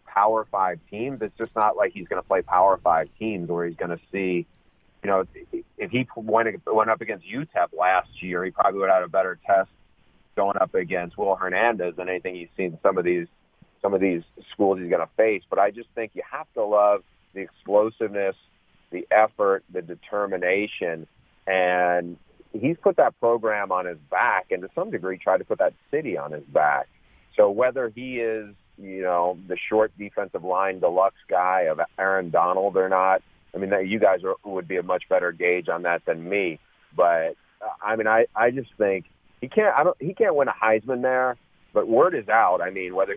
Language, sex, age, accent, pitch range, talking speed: English, male, 40-59, American, 90-115 Hz, 200 wpm